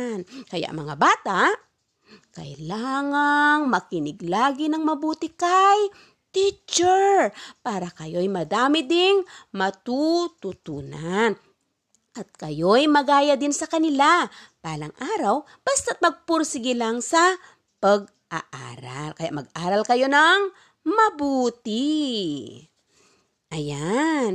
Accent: native